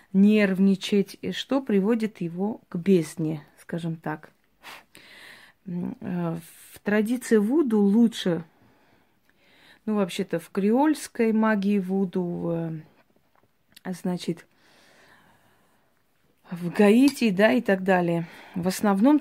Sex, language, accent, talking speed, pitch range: female, Russian, native, 90 wpm, 175-215 Hz